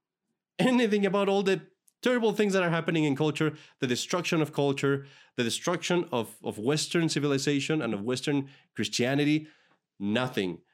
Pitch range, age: 120-155 Hz, 30-49